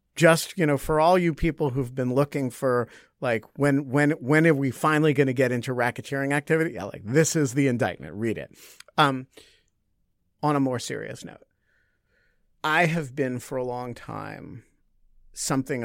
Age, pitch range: 50-69, 105-140 Hz